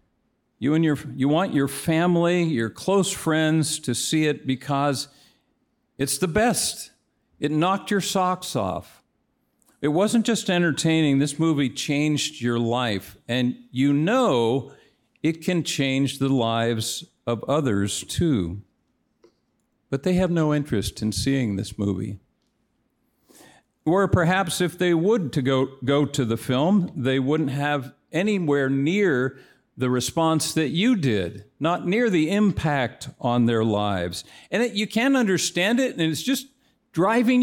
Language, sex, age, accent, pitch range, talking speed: English, male, 50-69, American, 120-170 Hz, 140 wpm